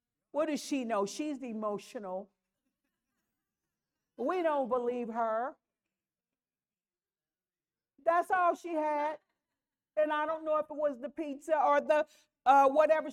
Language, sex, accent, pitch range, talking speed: English, female, American, 245-320 Hz, 125 wpm